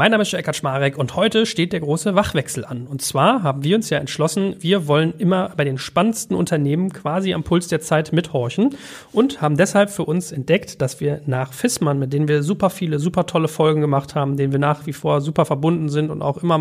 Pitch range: 150-190 Hz